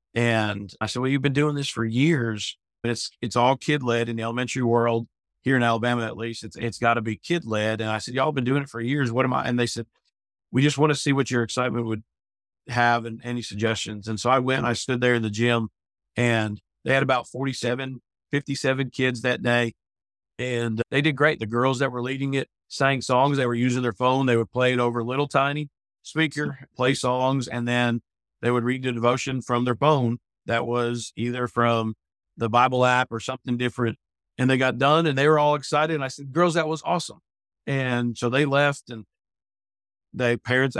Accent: American